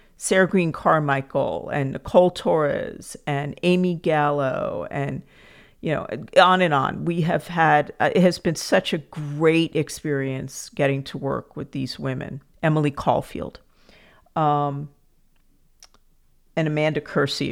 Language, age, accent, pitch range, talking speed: English, 50-69, American, 135-170 Hz, 125 wpm